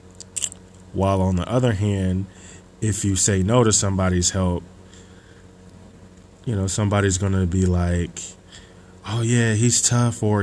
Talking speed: 140 wpm